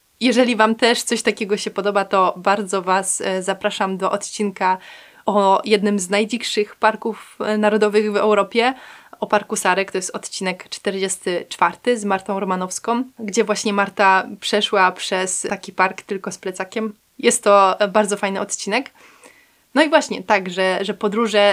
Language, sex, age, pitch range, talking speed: Polish, female, 20-39, 190-220 Hz, 150 wpm